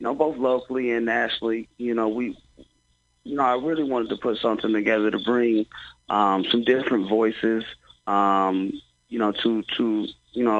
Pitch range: 95-110 Hz